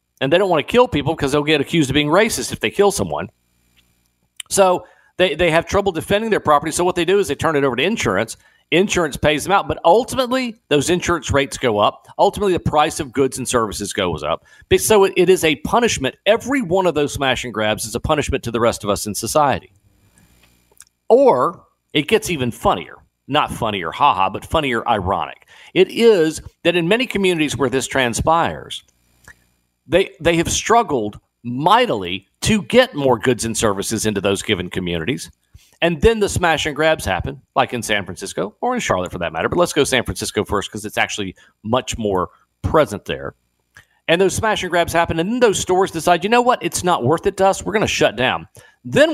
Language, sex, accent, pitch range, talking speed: English, male, American, 115-185 Hz, 210 wpm